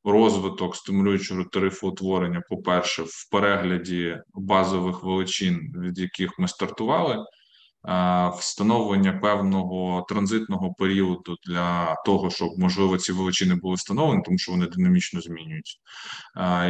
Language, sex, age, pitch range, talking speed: Ukrainian, male, 20-39, 90-105 Hz, 110 wpm